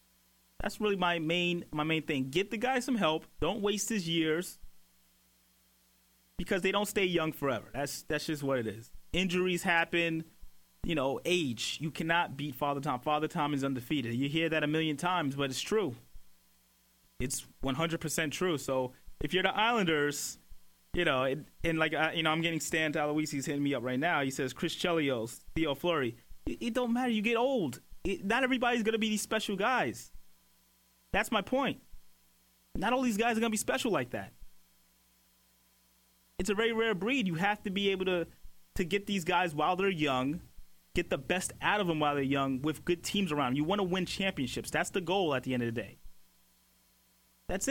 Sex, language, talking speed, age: male, English, 200 wpm, 30-49